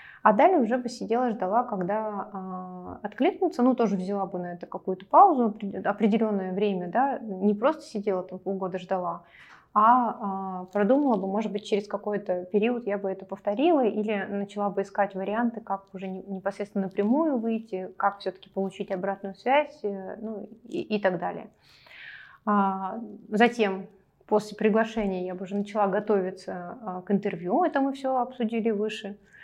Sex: female